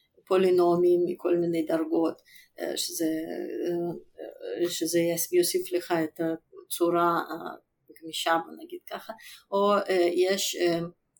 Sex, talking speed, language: female, 80 wpm, Hebrew